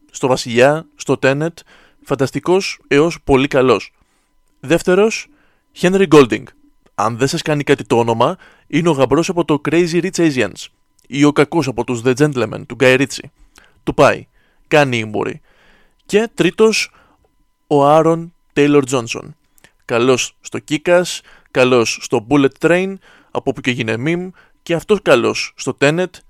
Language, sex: Greek, male